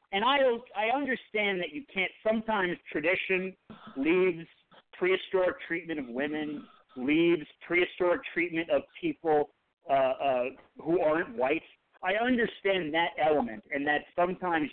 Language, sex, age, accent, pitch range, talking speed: English, male, 50-69, American, 145-205 Hz, 125 wpm